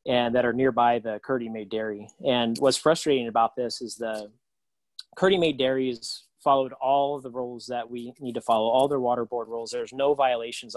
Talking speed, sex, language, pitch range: 205 wpm, male, English, 115-135 Hz